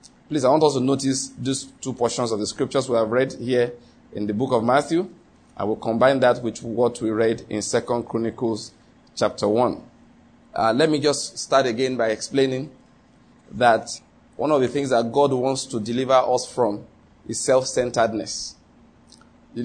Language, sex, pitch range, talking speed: English, male, 115-140 Hz, 170 wpm